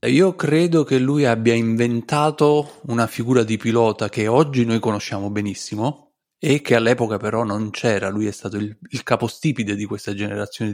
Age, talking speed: 30-49, 170 wpm